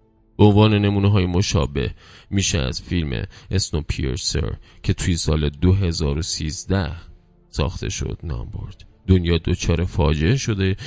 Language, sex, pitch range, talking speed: Persian, male, 85-105 Hz, 115 wpm